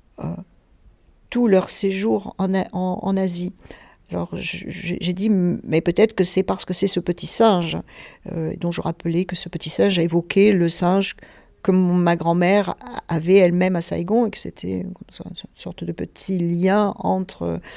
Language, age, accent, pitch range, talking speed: French, 50-69, French, 175-205 Hz, 170 wpm